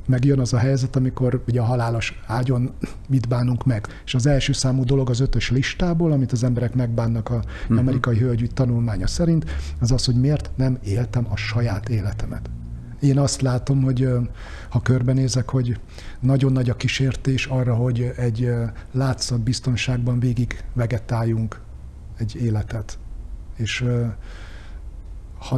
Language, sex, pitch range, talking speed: Hungarian, male, 115-130 Hz, 140 wpm